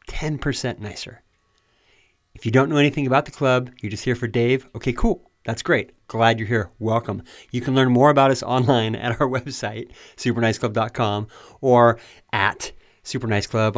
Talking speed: 160 wpm